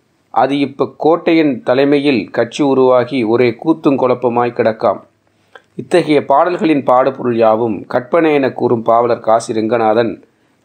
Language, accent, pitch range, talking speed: Tamil, native, 120-150 Hz, 105 wpm